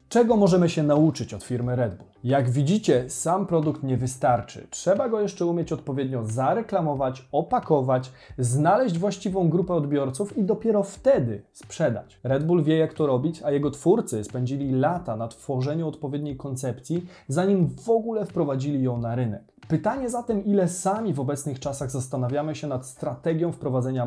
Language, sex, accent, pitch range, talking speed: Polish, male, native, 130-180 Hz, 155 wpm